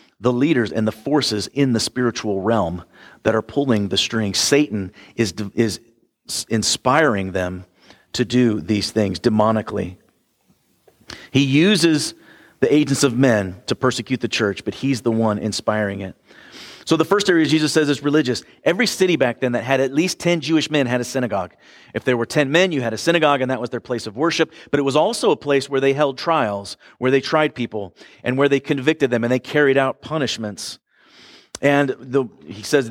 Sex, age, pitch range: male, 40-59, 110-145 Hz